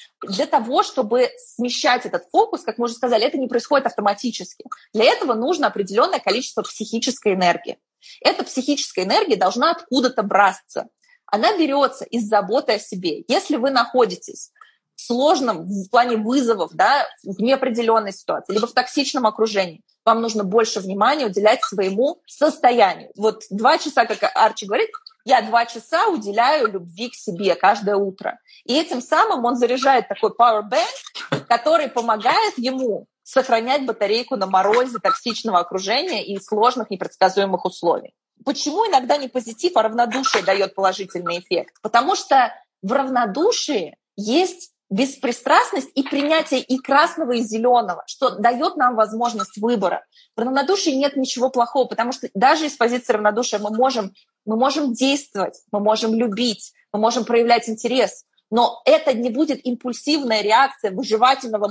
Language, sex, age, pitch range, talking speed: Russian, female, 20-39, 220-280 Hz, 145 wpm